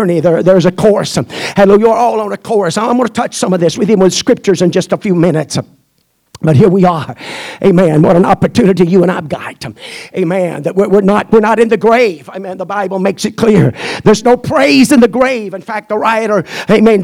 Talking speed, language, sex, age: 220 wpm, English, male, 50-69